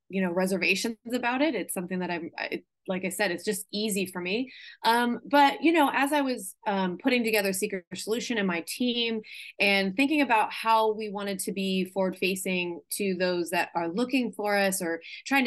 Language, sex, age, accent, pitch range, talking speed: English, female, 20-39, American, 190-235 Hz, 200 wpm